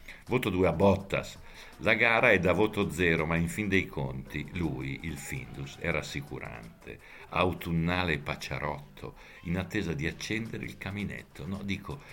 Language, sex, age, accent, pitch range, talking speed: Italian, male, 60-79, native, 75-105 Hz, 150 wpm